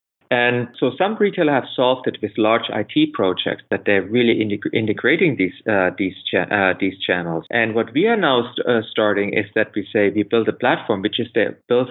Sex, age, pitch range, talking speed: male, 30-49, 105-125 Hz, 215 wpm